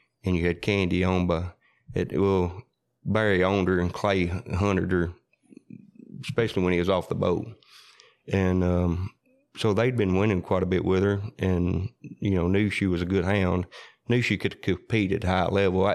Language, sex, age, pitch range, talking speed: English, male, 30-49, 90-100 Hz, 185 wpm